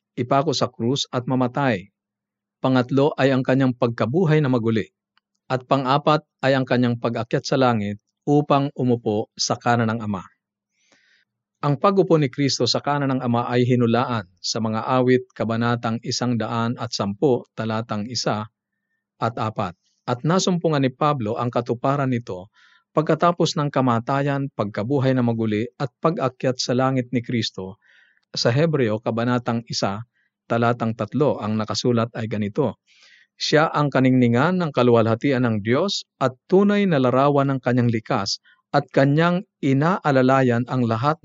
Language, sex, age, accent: Filipino, male, 50-69, native